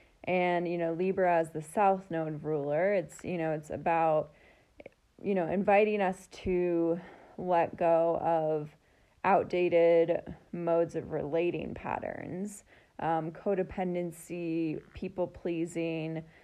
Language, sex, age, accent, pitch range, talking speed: English, female, 20-39, American, 155-180 Hz, 115 wpm